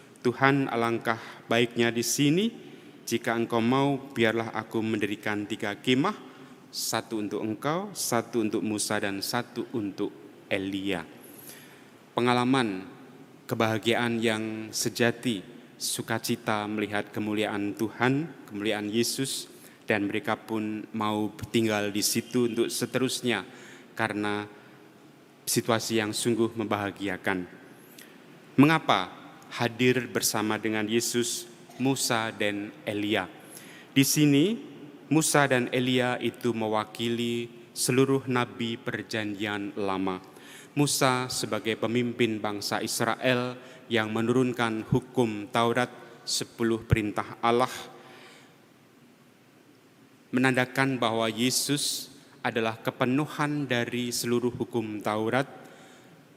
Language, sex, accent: Indonesian, male, native